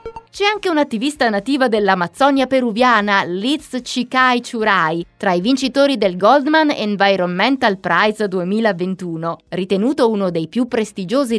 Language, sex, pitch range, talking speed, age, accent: Italian, female, 180-255 Hz, 115 wpm, 20-39, native